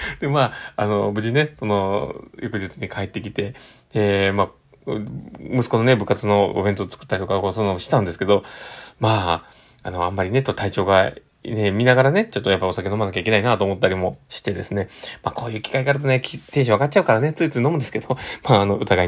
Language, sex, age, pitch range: Japanese, male, 20-39, 100-130 Hz